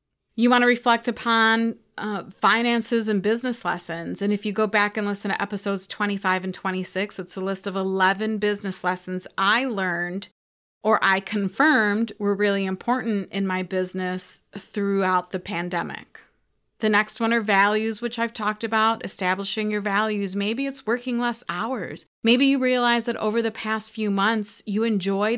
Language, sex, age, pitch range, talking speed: English, female, 30-49, 195-220 Hz, 170 wpm